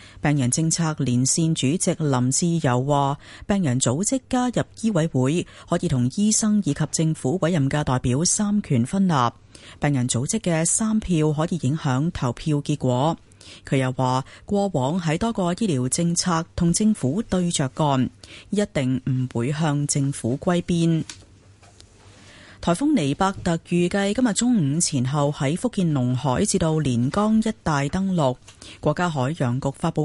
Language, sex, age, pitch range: Chinese, female, 30-49, 130-175 Hz